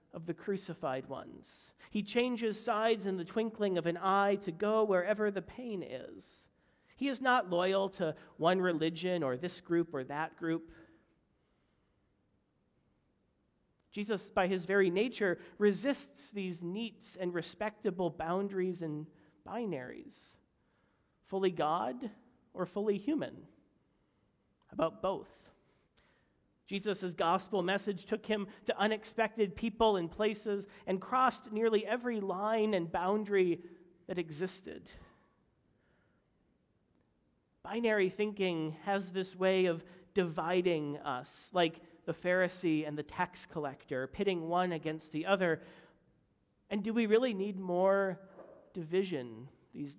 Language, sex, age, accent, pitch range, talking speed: English, male, 40-59, American, 170-205 Hz, 120 wpm